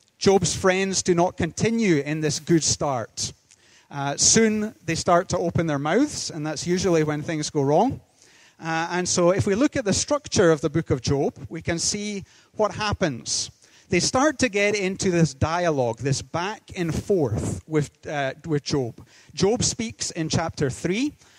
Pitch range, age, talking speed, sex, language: 140-185 Hz, 40-59, 175 wpm, male, English